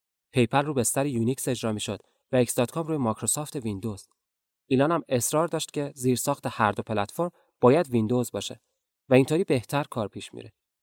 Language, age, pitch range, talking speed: Persian, 30-49, 110-135 Hz, 160 wpm